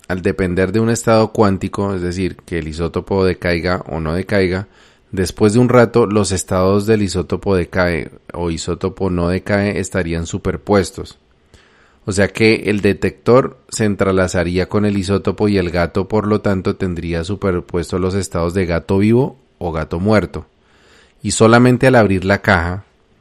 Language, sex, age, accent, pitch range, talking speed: Spanish, male, 30-49, Colombian, 85-105 Hz, 160 wpm